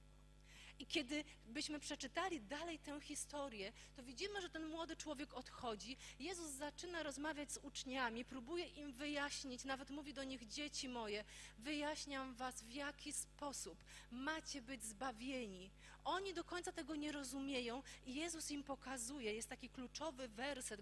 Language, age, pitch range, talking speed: Polish, 40-59, 230-295 Hz, 145 wpm